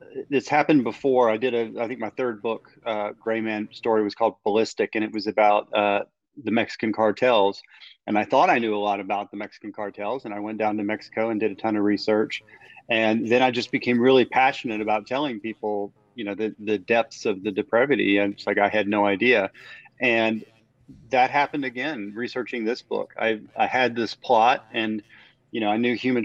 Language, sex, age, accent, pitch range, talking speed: English, male, 30-49, American, 105-125 Hz, 210 wpm